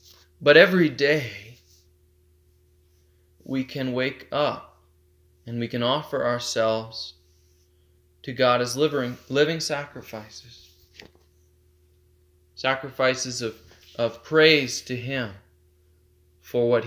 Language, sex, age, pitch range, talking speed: English, male, 20-39, 90-145 Hz, 90 wpm